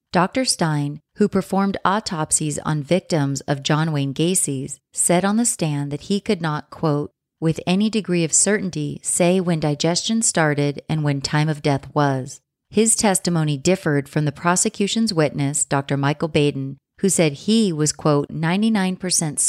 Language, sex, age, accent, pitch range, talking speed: English, female, 30-49, American, 145-180 Hz, 155 wpm